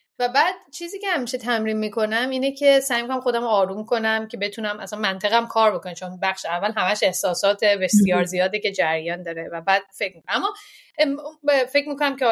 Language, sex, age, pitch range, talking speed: Persian, female, 30-49, 200-275 Hz, 190 wpm